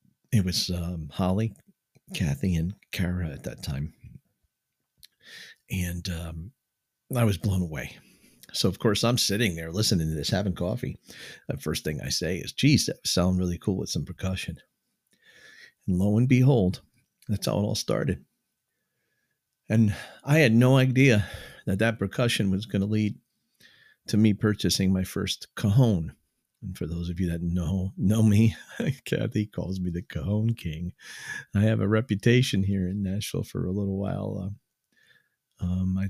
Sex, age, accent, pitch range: male, 50-69, American, 90-110 Hz